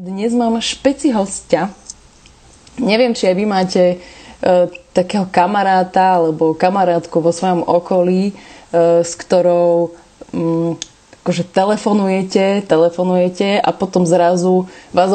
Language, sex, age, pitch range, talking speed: Slovak, female, 20-39, 170-200 Hz, 110 wpm